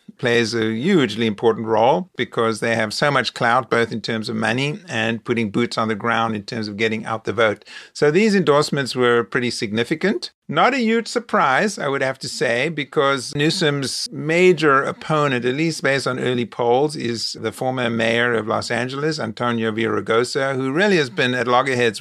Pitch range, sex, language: 115-150 Hz, male, English